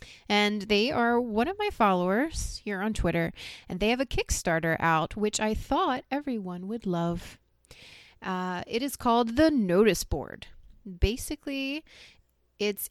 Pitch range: 180-225 Hz